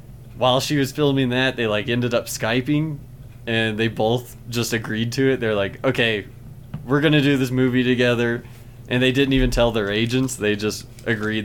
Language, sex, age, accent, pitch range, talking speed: English, male, 20-39, American, 115-130 Hz, 195 wpm